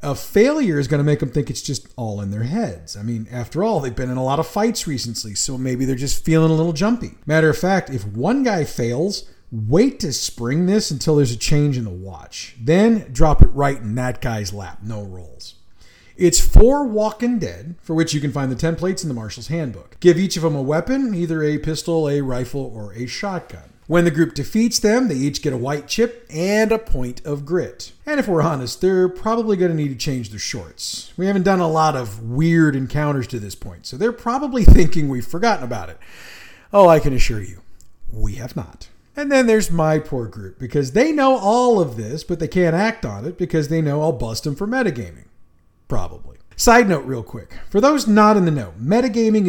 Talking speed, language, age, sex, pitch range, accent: 225 wpm, English, 40-59, male, 120-185 Hz, American